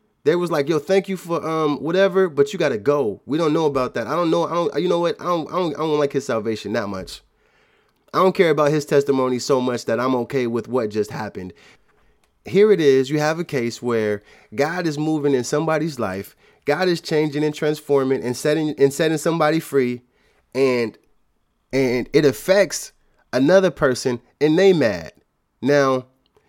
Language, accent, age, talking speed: English, American, 20-39, 200 wpm